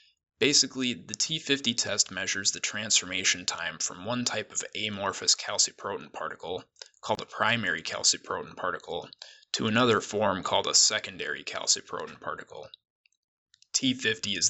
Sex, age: male, 20-39